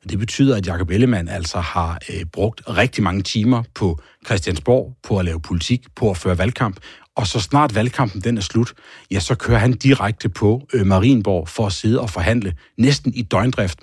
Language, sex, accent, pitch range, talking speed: Danish, male, native, 95-120 Hz, 195 wpm